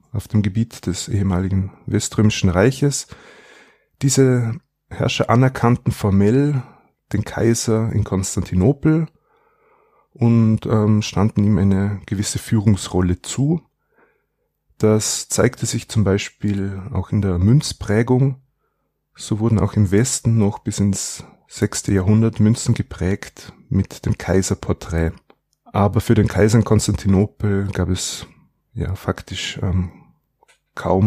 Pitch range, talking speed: 95-115 Hz, 110 wpm